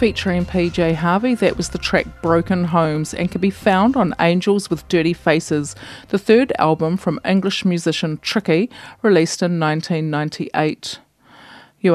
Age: 30-49